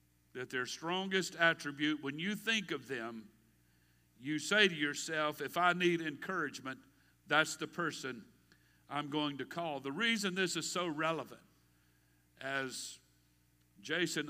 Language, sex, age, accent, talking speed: English, male, 50-69, American, 135 wpm